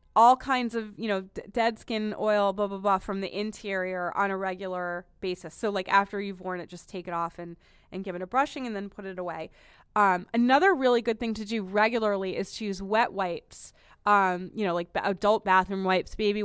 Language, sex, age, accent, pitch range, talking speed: English, female, 20-39, American, 185-235 Hz, 220 wpm